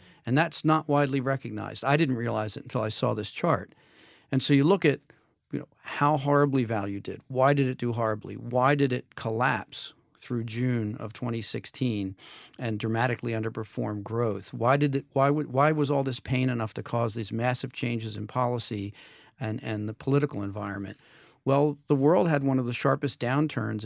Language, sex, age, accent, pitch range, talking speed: English, male, 50-69, American, 115-140 Hz, 185 wpm